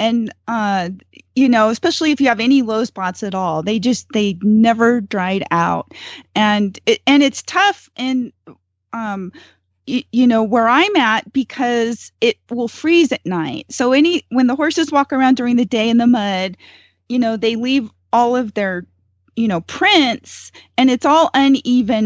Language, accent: English, American